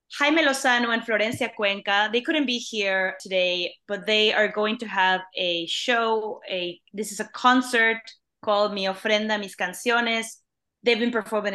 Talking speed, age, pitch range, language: 160 wpm, 20-39, 190-240 Hz, English